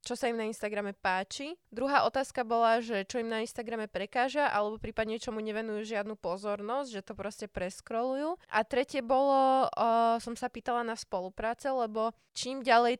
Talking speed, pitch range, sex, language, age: 170 wpm, 200-235 Hz, female, Slovak, 20-39